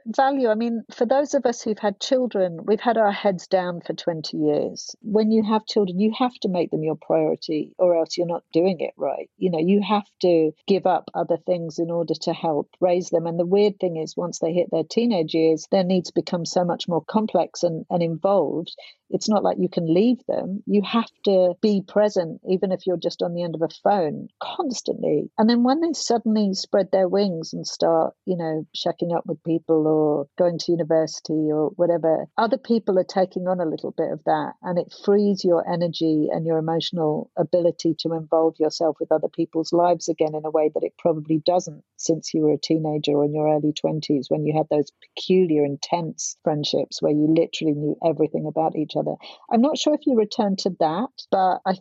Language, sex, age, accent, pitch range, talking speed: English, female, 50-69, British, 160-200 Hz, 215 wpm